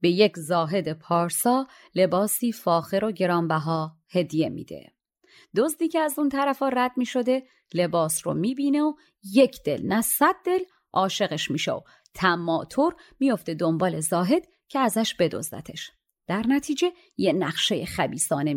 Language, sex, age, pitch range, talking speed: Persian, female, 30-49, 175-285 Hz, 135 wpm